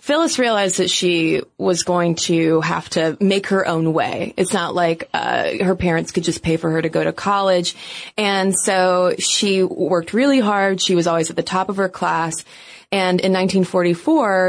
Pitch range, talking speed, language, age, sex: 175-225 Hz, 190 wpm, English, 20-39, female